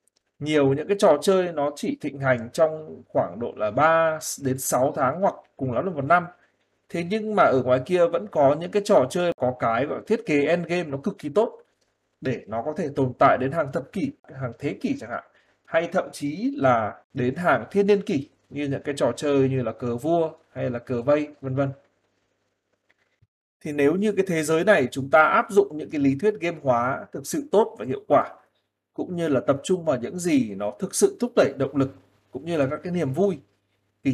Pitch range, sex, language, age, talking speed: 125-170 Hz, male, Vietnamese, 20-39, 230 wpm